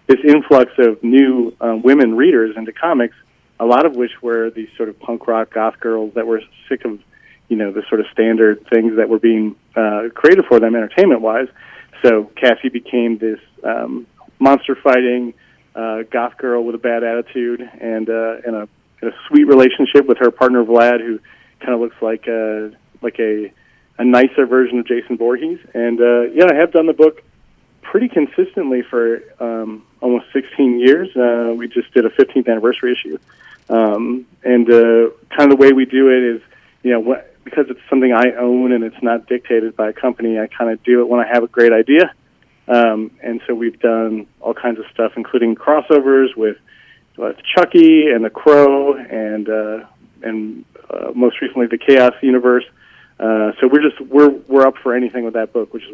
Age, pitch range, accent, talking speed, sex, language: 40-59, 115-130 Hz, American, 195 wpm, male, English